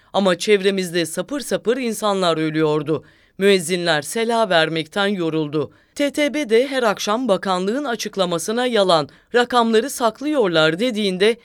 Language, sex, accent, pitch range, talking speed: English, female, Turkish, 165-230 Hz, 100 wpm